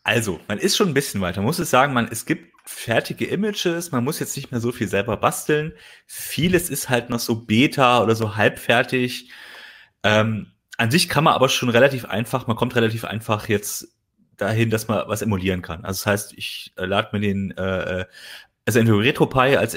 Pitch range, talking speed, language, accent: 105-130 Hz, 205 wpm, German, German